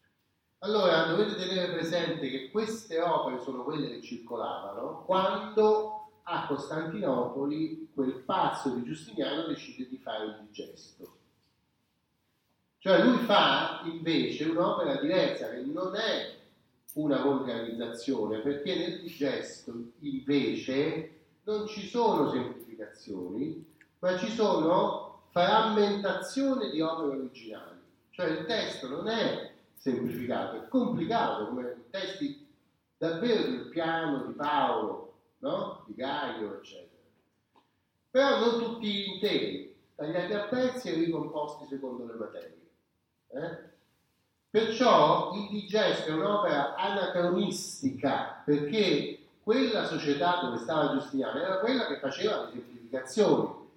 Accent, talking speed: native, 115 wpm